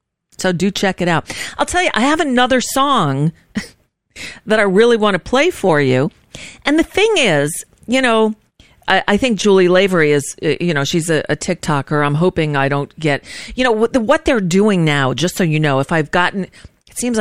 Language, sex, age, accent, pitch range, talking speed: English, female, 40-59, American, 155-225 Hz, 205 wpm